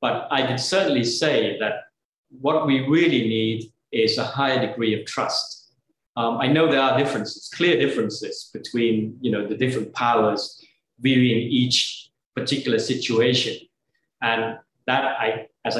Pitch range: 120-150 Hz